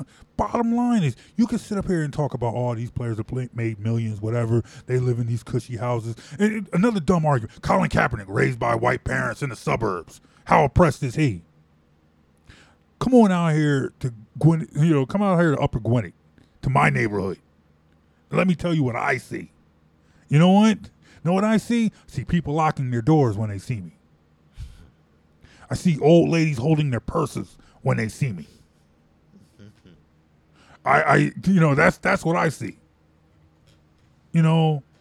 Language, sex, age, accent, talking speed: English, male, 20-39, American, 185 wpm